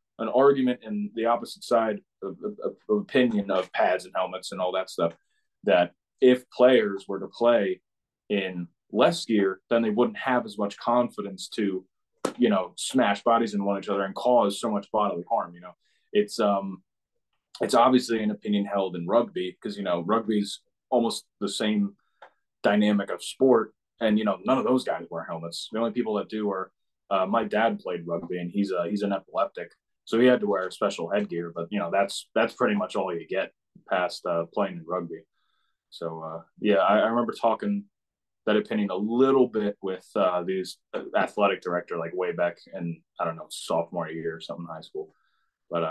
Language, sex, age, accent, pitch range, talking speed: English, male, 20-39, American, 95-120 Hz, 195 wpm